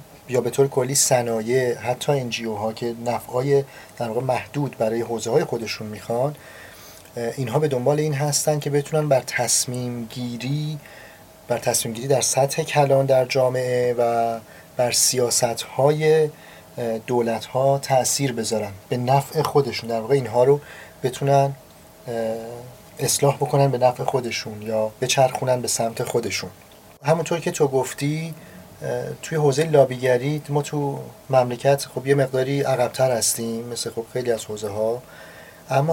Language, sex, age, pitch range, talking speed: Persian, male, 30-49, 120-140 Hz, 135 wpm